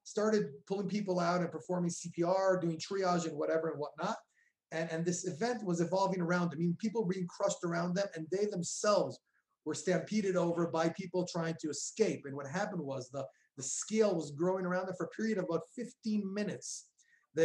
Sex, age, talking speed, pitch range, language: male, 30-49, 195 wpm, 155-195 Hz, English